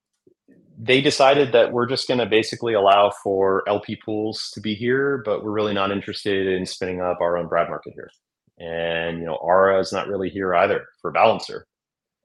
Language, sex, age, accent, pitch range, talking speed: English, male, 30-49, American, 85-110 Hz, 190 wpm